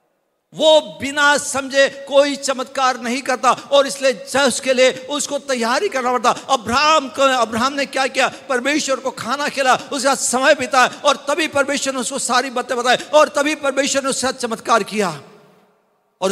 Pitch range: 245-280 Hz